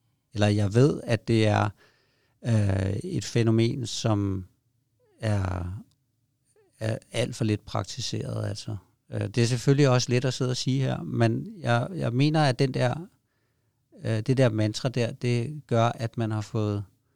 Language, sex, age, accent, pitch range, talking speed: Danish, male, 60-79, native, 110-130 Hz, 135 wpm